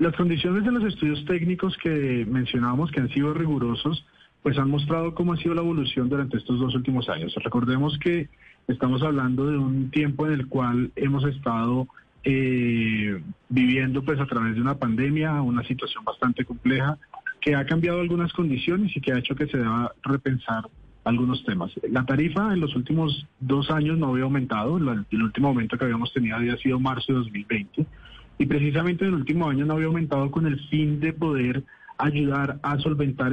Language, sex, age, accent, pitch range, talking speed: Spanish, male, 30-49, Colombian, 120-150 Hz, 185 wpm